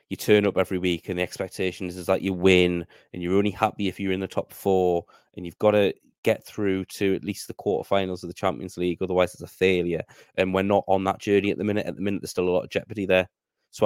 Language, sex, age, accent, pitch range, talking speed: English, male, 20-39, British, 90-100 Hz, 270 wpm